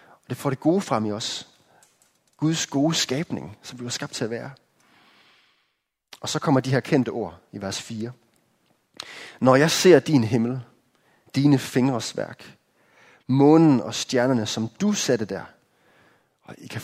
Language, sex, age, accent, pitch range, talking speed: Danish, male, 30-49, native, 115-150 Hz, 160 wpm